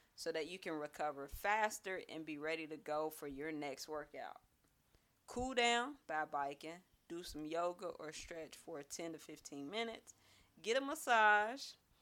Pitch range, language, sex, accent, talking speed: 155-205 Hz, English, female, American, 160 wpm